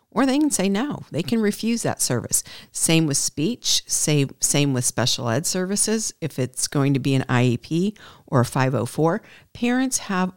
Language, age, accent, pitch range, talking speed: English, 50-69, American, 135-180 Hz, 175 wpm